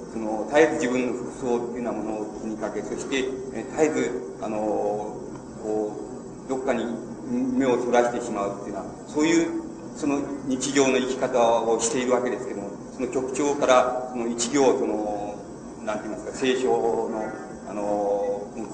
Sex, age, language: male, 40-59, Japanese